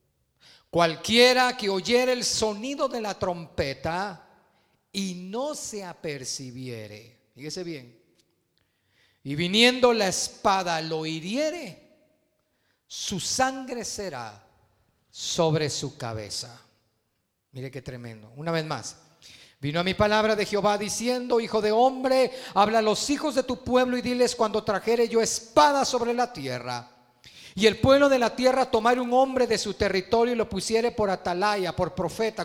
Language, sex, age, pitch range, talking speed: Spanish, male, 40-59, 170-250 Hz, 140 wpm